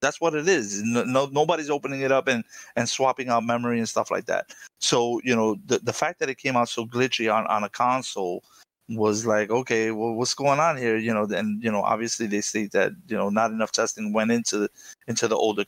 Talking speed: 235 wpm